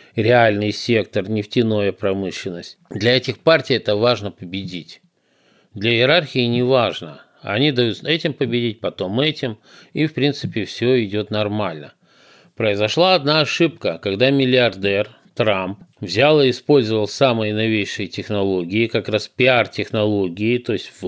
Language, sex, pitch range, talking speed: Russian, male, 105-135 Hz, 120 wpm